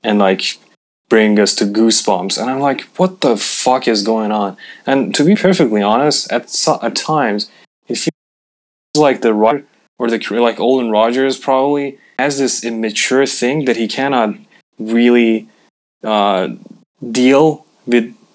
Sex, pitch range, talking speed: male, 110-135 Hz, 155 wpm